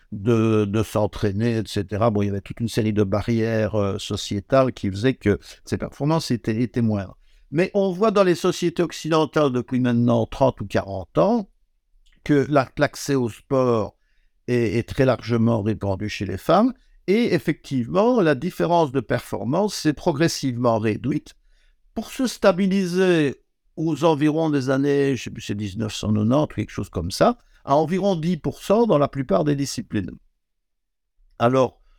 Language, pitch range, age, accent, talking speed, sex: French, 115-160 Hz, 60-79, French, 155 wpm, male